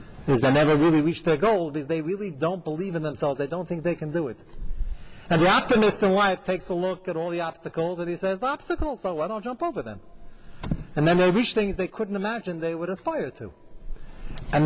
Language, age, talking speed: English, 40-59, 235 wpm